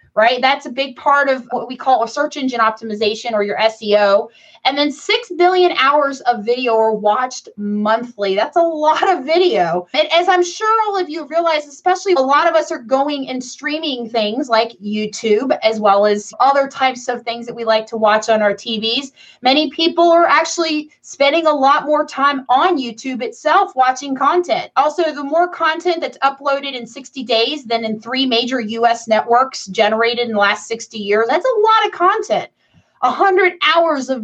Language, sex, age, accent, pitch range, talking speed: English, female, 20-39, American, 220-305 Hz, 195 wpm